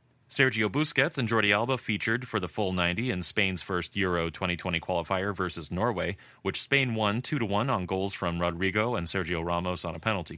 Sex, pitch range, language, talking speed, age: male, 90-120 Hz, English, 195 wpm, 30-49